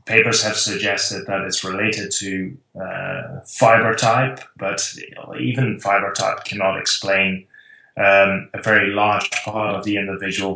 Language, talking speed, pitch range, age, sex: English, 135 wpm, 95-115 Hz, 20-39, male